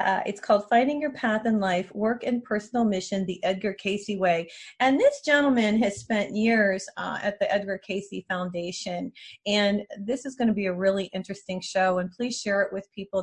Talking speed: 200 wpm